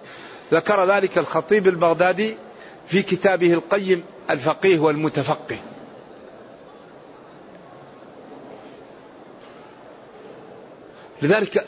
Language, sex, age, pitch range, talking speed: Arabic, male, 50-69, 165-210 Hz, 50 wpm